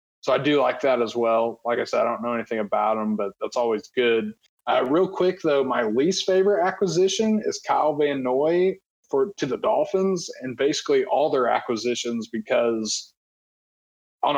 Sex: male